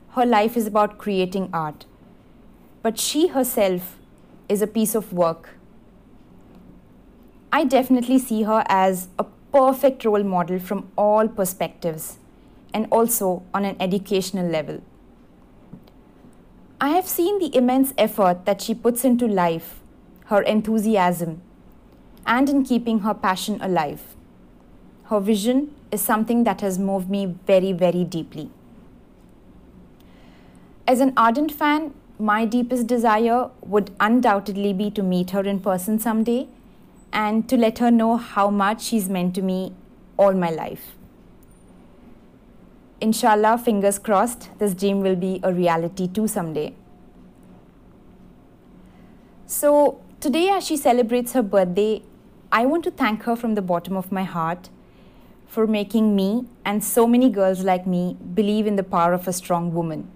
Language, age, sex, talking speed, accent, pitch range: Hindi, 20-39, female, 140 wpm, native, 185-235 Hz